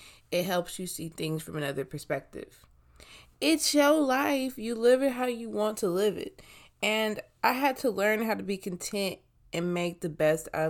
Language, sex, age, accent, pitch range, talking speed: English, female, 20-39, American, 160-225 Hz, 190 wpm